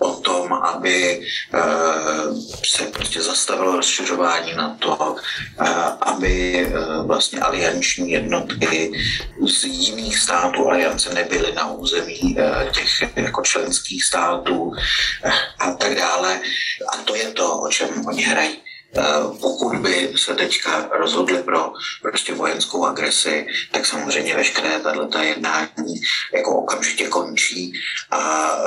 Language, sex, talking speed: Slovak, male, 105 wpm